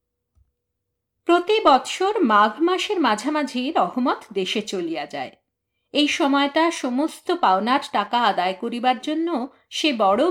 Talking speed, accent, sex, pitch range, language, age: 110 wpm, native, female, 220-290 Hz, Bengali, 50-69